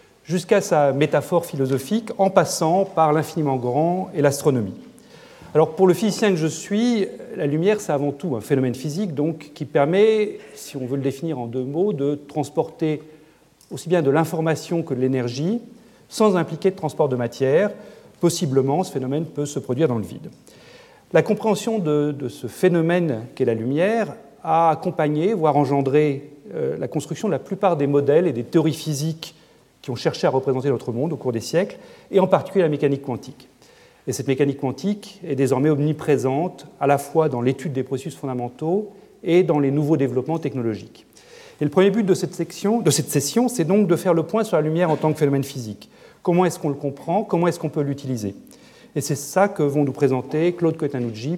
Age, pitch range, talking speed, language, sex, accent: 40-59, 140-180 Hz, 195 wpm, French, male, French